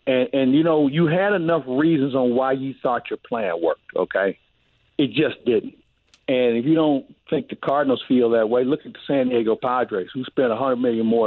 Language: English